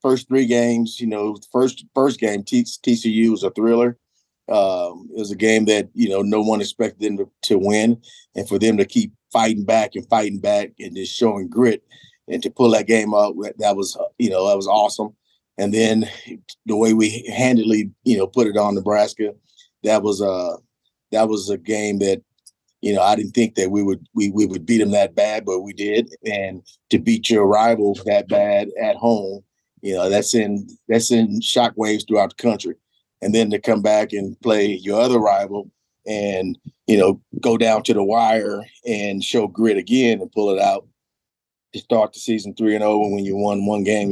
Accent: American